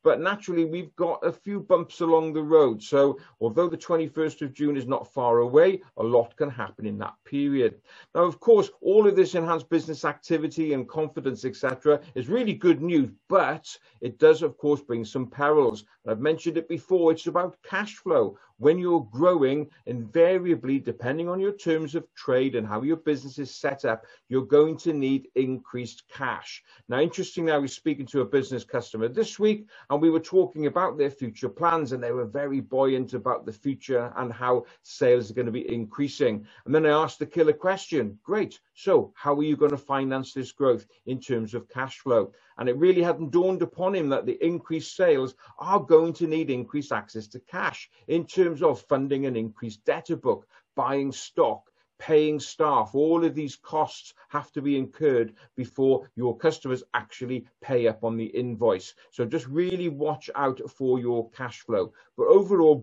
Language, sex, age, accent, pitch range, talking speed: English, male, 50-69, British, 130-165 Hz, 195 wpm